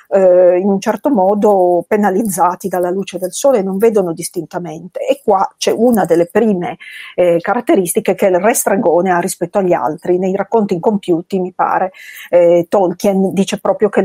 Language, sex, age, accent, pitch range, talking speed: Italian, female, 40-59, native, 185-230 Hz, 165 wpm